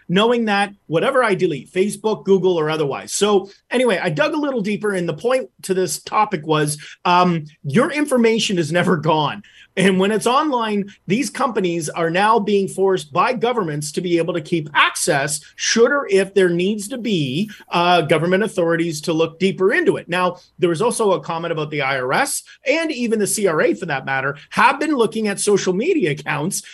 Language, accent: English, American